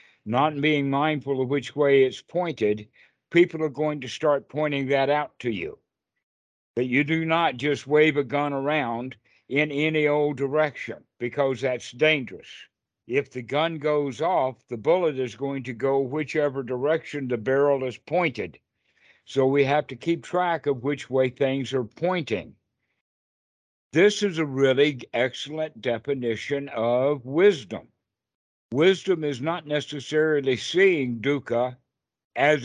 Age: 60-79